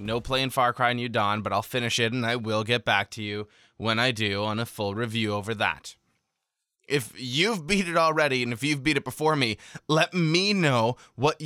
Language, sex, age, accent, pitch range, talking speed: English, male, 20-39, American, 115-150 Hz, 220 wpm